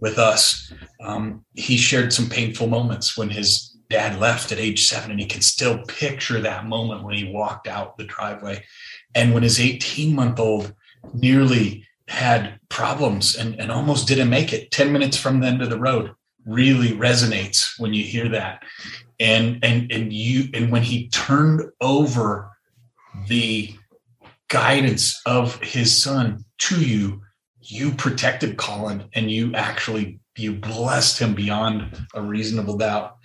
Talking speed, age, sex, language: 155 wpm, 30-49, male, English